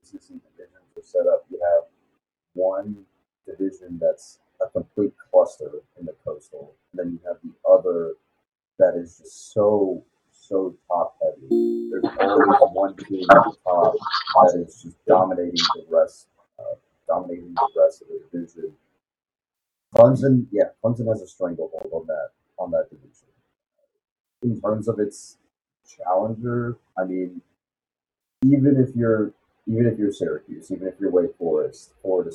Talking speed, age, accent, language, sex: 145 wpm, 40-59, American, English, male